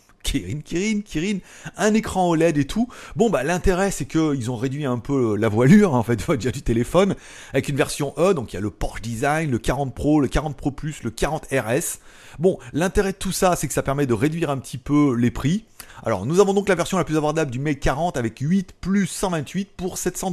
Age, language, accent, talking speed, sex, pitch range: 30-49, French, French, 235 wpm, male, 115-165 Hz